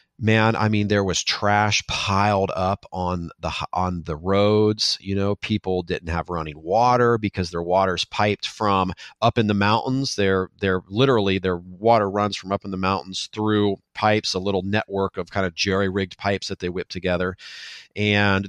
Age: 40-59